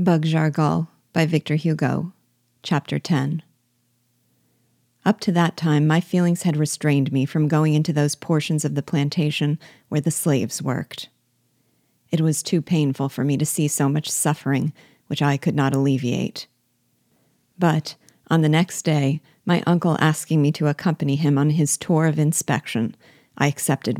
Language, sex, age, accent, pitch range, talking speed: English, female, 40-59, American, 140-160 Hz, 160 wpm